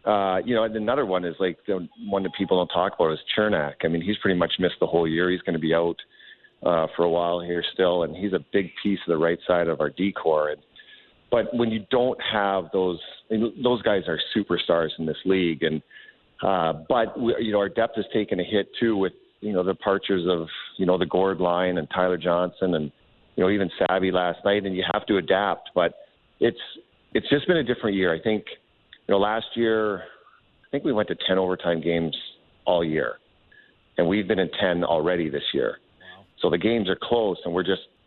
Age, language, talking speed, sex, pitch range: 40-59, English, 220 wpm, male, 85-100 Hz